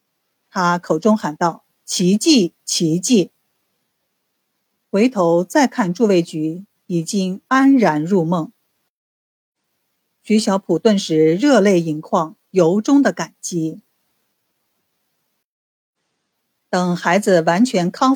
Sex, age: female, 50-69